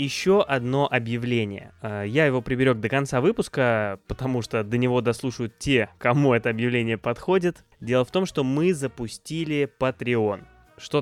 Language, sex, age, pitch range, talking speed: Russian, male, 20-39, 115-145 Hz, 145 wpm